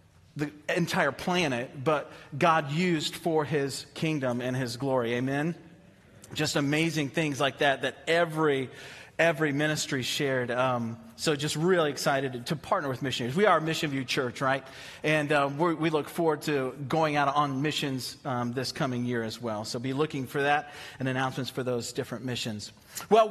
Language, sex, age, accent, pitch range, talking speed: English, male, 40-59, American, 150-220 Hz, 170 wpm